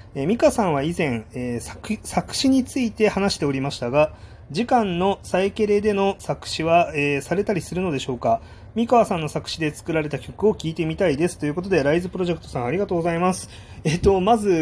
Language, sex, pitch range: Japanese, male, 120-170 Hz